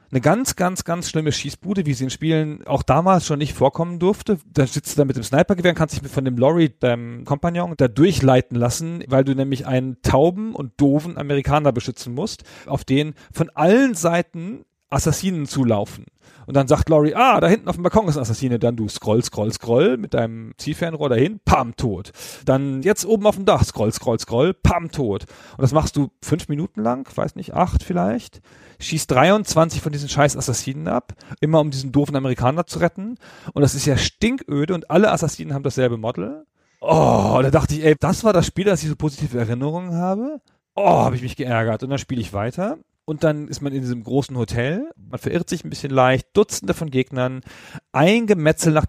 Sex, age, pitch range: male, 40-59, 130-170 Hz